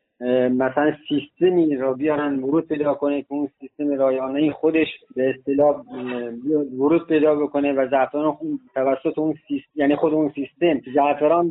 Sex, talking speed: male, 135 wpm